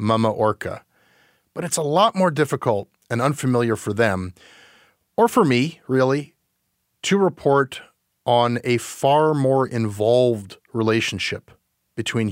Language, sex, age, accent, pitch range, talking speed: English, male, 30-49, American, 110-160 Hz, 120 wpm